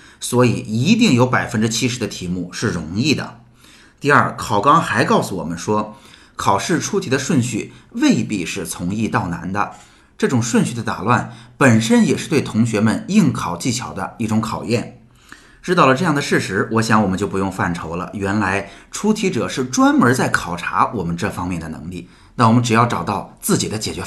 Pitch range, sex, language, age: 100-125 Hz, male, Chinese, 30-49